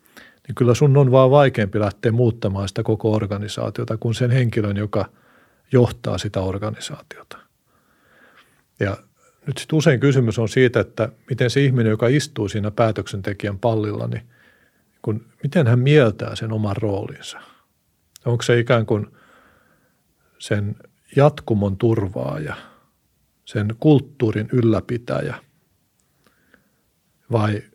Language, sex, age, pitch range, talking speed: Finnish, male, 50-69, 105-125 Hz, 115 wpm